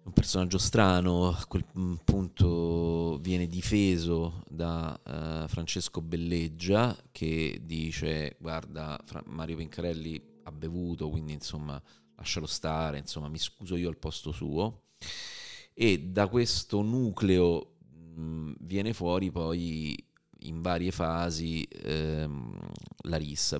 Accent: native